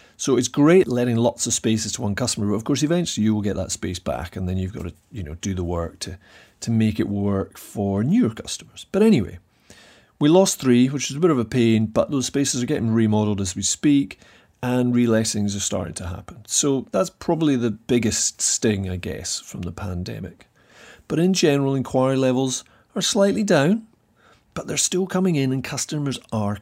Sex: male